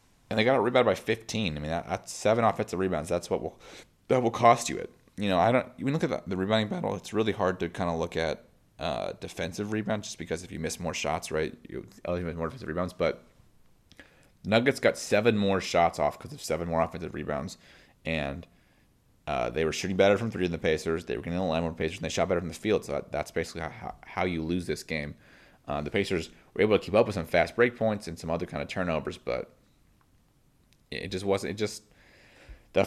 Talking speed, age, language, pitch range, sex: 235 wpm, 30-49, English, 85-105 Hz, male